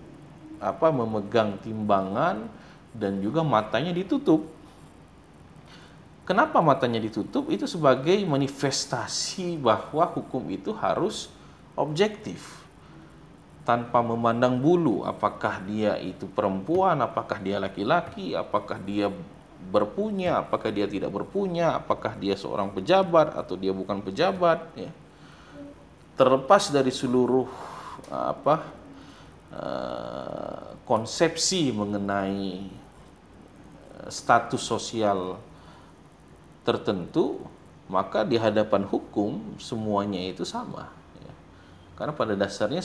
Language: English